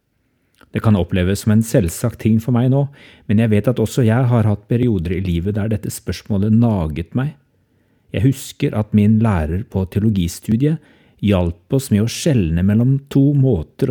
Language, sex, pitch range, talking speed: English, male, 95-125 Hz, 180 wpm